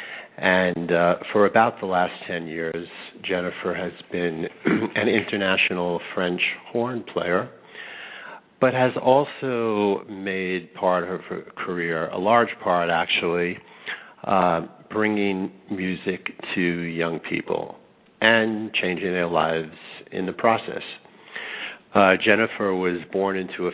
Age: 50-69